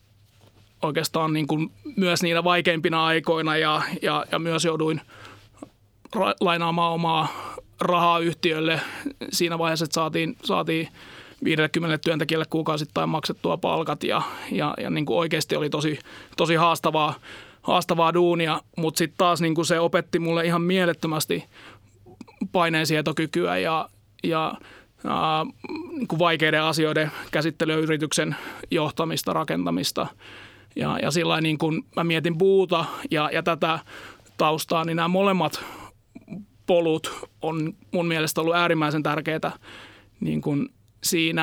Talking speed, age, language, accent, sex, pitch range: 115 wpm, 30-49, Finnish, native, male, 155-170 Hz